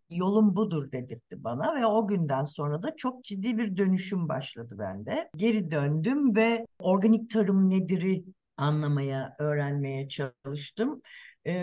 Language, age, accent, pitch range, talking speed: Turkish, 60-79, native, 160-215 Hz, 130 wpm